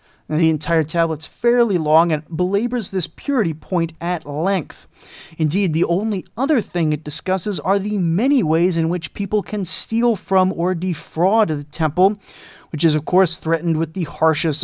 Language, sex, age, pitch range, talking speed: English, male, 30-49, 160-215 Hz, 170 wpm